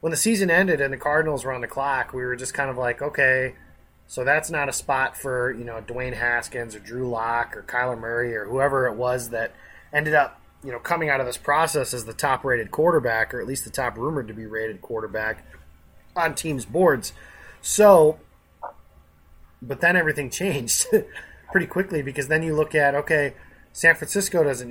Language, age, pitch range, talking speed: English, 30-49, 110-150 Hz, 200 wpm